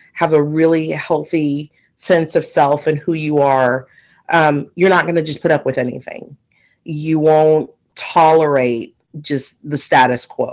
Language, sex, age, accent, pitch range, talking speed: English, female, 30-49, American, 130-155 Hz, 160 wpm